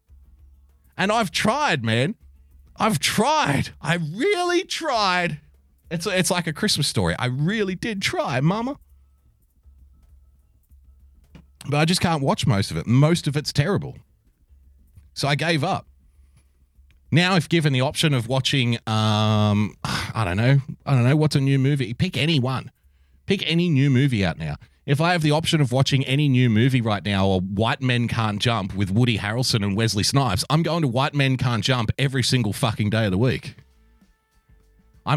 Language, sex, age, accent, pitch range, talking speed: English, male, 30-49, Australian, 100-155 Hz, 170 wpm